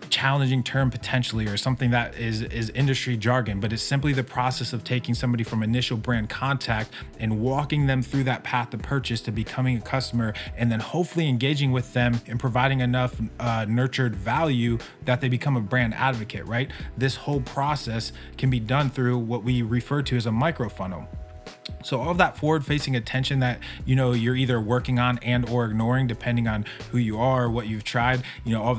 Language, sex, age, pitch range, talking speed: English, male, 20-39, 115-135 Hz, 200 wpm